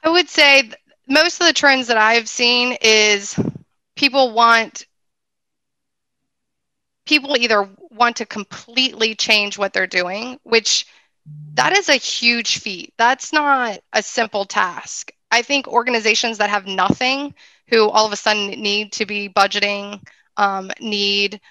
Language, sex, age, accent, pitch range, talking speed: English, female, 20-39, American, 205-255 Hz, 140 wpm